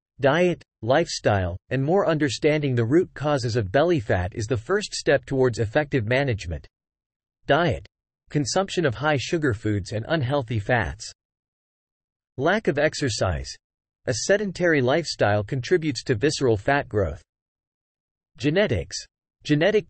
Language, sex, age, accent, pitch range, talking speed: English, male, 40-59, American, 110-155 Hz, 120 wpm